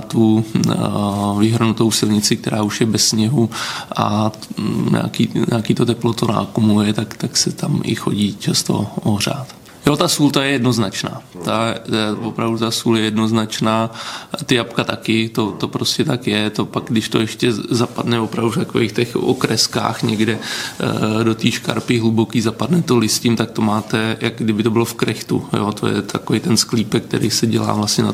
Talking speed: 185 wpm